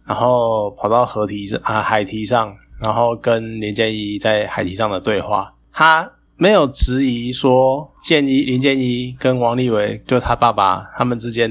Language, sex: Chinese, male